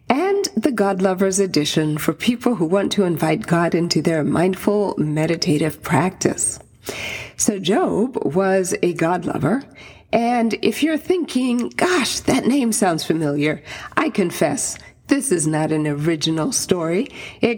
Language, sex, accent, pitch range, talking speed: English, female, American, 165-255 Hz, 135 wpm